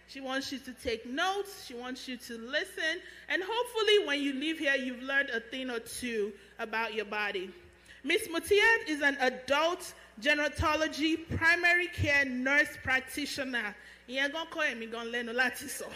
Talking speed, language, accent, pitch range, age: 135 wpm, English, Nigerian, 265-375 Hz, 30-49